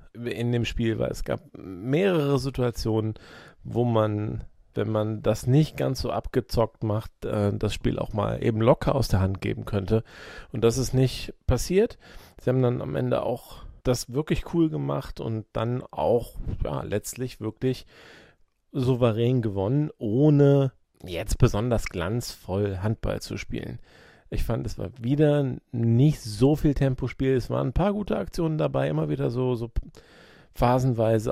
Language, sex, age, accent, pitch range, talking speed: German, male, 40-59, German, 105-130 Hz, 150 wpm